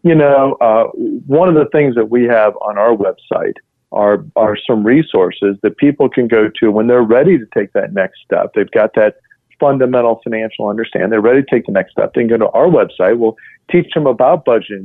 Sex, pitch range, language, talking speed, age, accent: male, 105-120 Hz, English, 220 wpm, 40-59, American